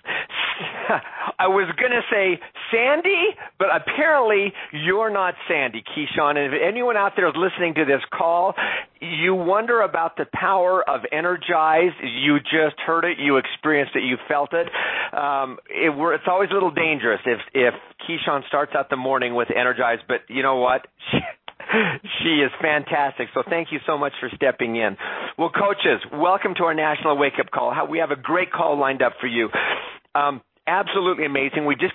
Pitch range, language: 140-185 Hz, English